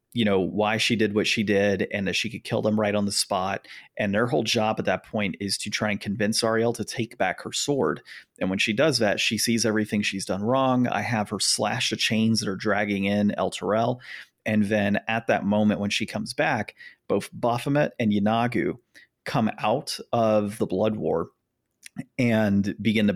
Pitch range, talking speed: 100-110 Hz, 205 wpm